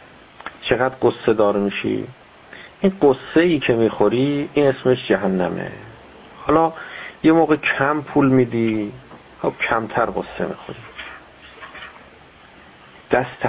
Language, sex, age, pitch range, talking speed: Persian, male, 50-69, 120-170 Hz, 100 wpm